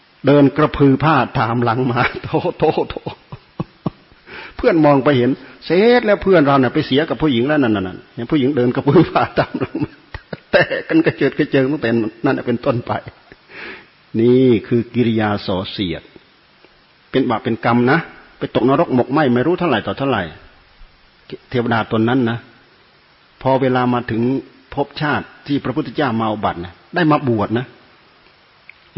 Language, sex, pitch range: Thai, male, 115-150 Hz